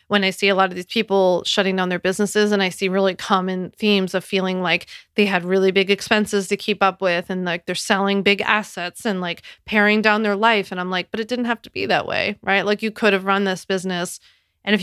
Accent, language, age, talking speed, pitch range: American, English, 30-49, 255 wpm, 185-210 Hz